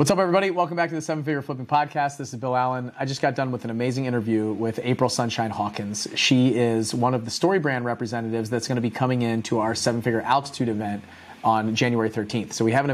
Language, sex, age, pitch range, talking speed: English, male, 30-49, 115-140 Hz, 250 wpm